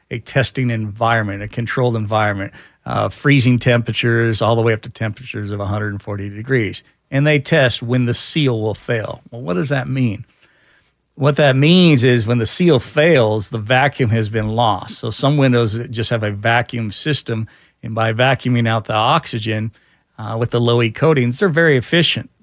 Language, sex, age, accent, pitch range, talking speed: English, male, 40-59, American, 110-130 Hz, 180 wpm